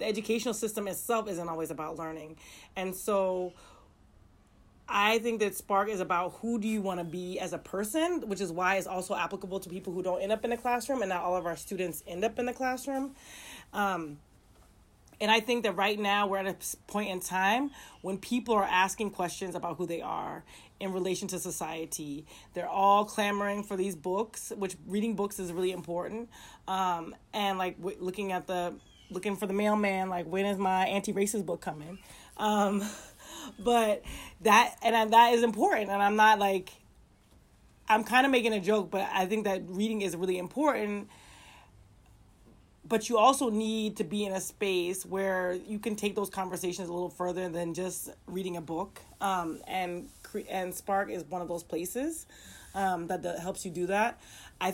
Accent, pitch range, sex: American, 180-210 Hz, female